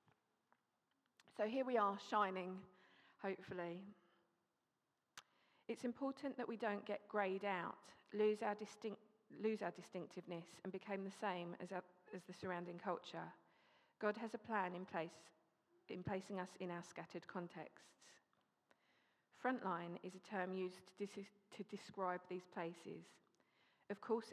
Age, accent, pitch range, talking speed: 40-59, British, 180-210 Hz, 135 wpm